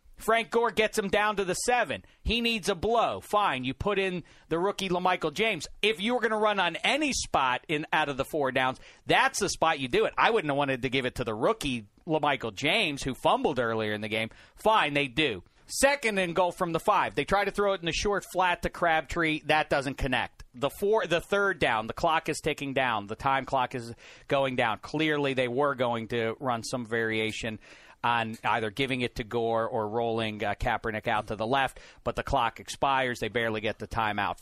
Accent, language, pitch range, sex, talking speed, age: American, English, 120-190 Hz, male, 225 wpm, 40-59